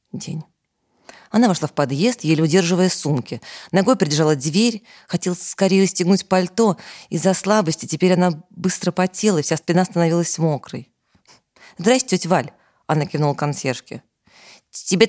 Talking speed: 130 wpm